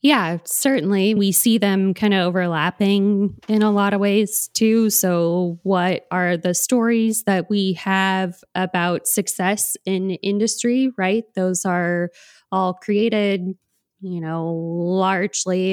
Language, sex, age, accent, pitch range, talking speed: English, female, 20-39, American, 175-200 Hz, 130 wpm